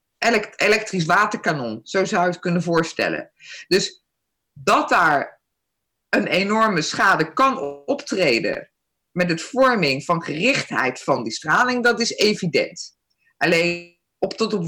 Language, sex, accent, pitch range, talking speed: Dutch, female, Dutch, 170-230 Hz, 125 wpm